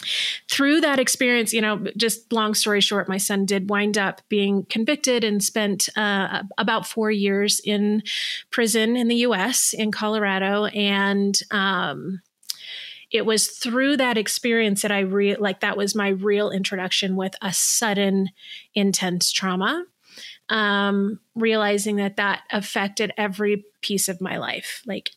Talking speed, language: 145 wpm, English